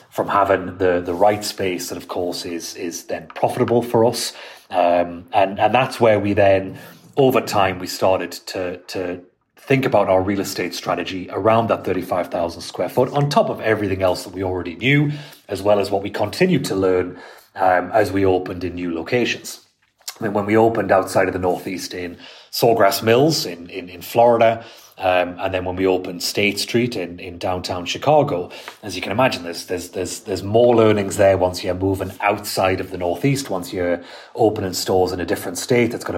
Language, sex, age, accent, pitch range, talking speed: English, male, 30-49, British, 90-110 Hz, 200 wpm